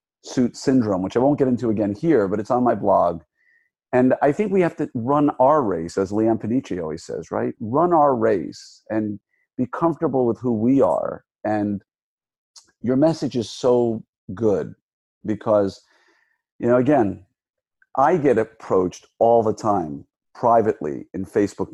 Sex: male